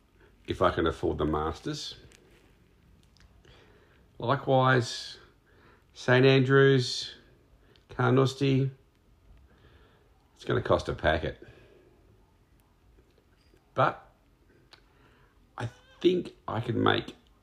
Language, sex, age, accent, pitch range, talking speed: English, male, 50-69, Australian, 95-120 Hz, 70 wpm